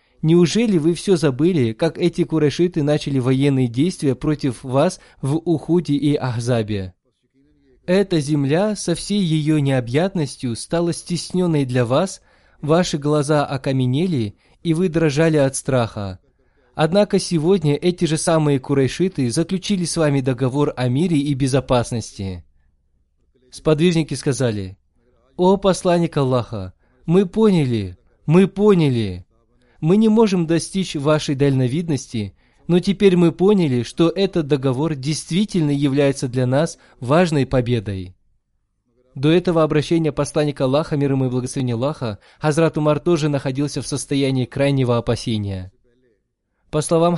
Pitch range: 125-165 Hz